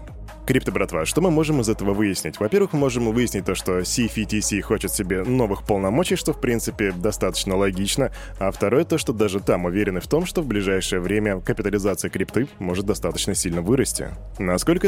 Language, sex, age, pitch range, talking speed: Russian, male, 10-29, 100-140 Hz, 175 wpm